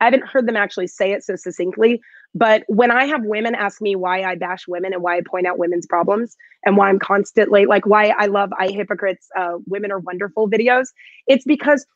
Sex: female